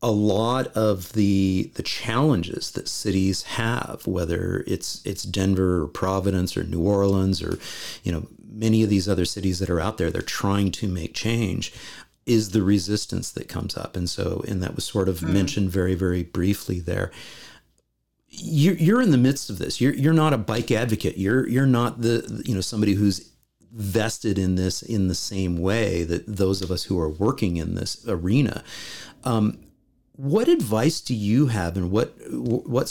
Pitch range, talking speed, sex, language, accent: 90-115 Hz, 180 wpm, male, English, American